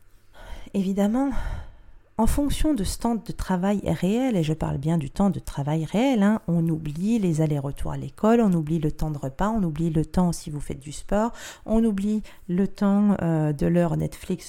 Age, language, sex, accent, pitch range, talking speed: 40-59, French, female, French, 160-210 Hz, 200 wpm